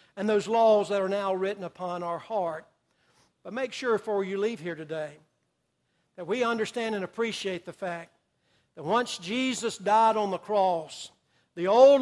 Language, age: English, 60-79